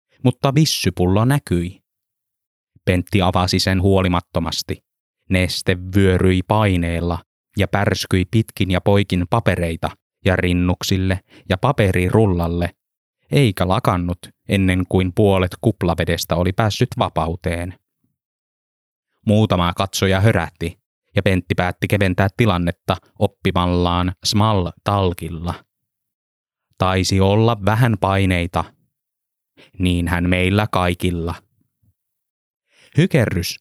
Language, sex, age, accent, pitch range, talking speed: Finnish, male, 20-39, native, 90-105 Hz, 85 wpm